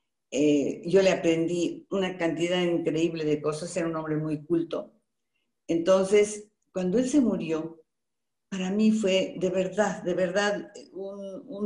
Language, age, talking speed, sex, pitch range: Spanish, 50-69, 145 wpm, female, 170-220 Hz